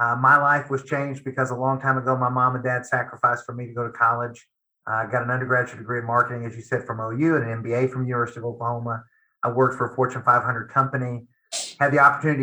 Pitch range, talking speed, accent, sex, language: 135-200 Hz, 245 wpm, American, male, English